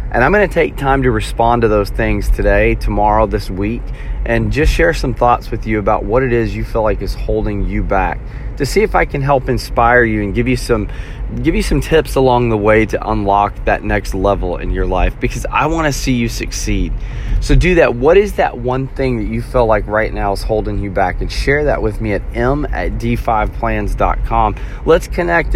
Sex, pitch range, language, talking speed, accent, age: male, 105-135 Hz, English, 230 wpm, American, 30-49